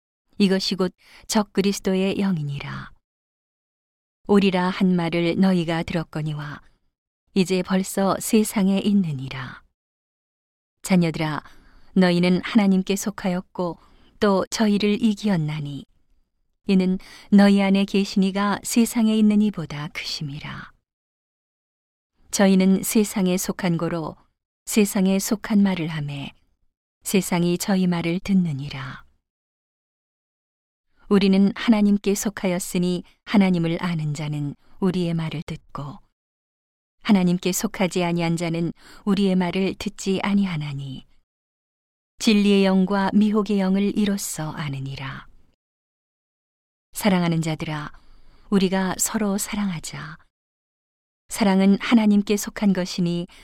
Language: Korean